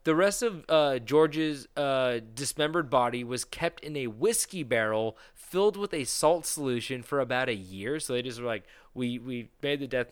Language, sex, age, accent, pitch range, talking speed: English, male, 20-39, American, 115-150 Hz, 195 wpm